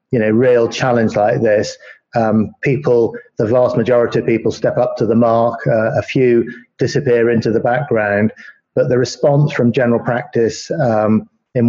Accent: British